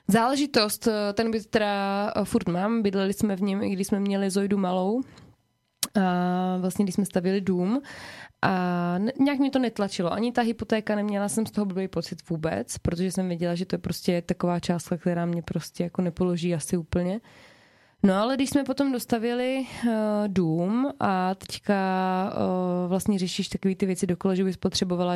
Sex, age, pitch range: female, 20-39, 180-205 Hz